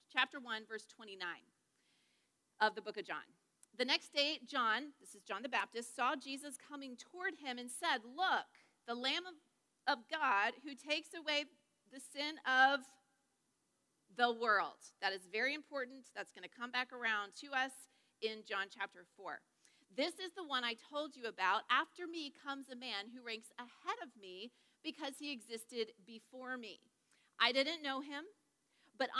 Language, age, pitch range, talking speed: English, 40-59, 240-315 Hz, 170 wpm